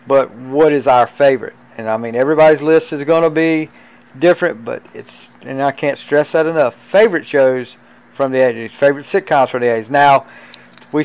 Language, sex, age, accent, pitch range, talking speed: English, male, 50-69, American, 135-170 Hz, 190 wpm